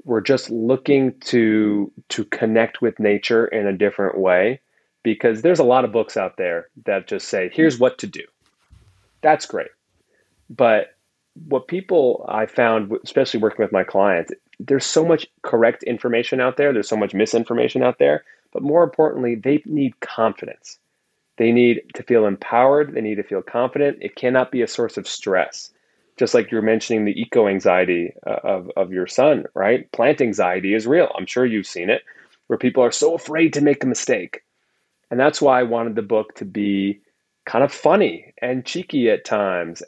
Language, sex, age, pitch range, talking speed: English, male, 30-49, 105-135 Hz, 180 wpm